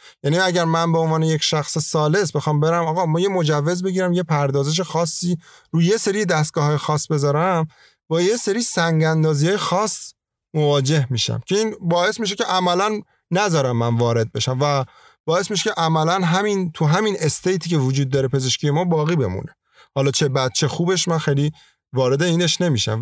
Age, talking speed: 30-49, 170 wpm